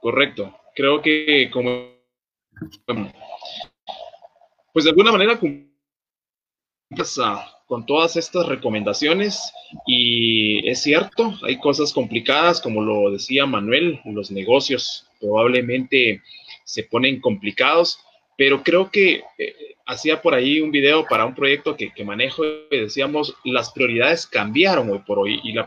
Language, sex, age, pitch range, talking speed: Spanish, male, 30-49, 125-175 Hz, 125 wpm